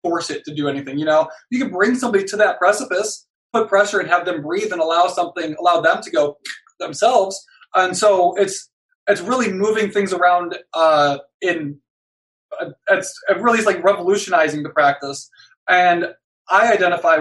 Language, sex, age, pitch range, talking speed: English, male, 20-39, 160-210 Hz, 170 wpm